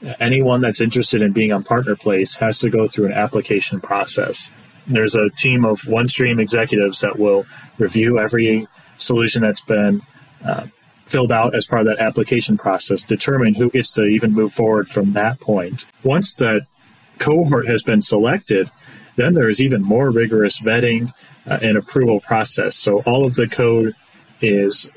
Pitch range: 105-130 Hz